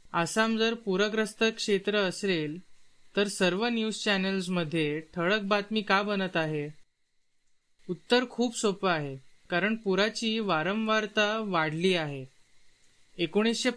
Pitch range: 170-215 Hz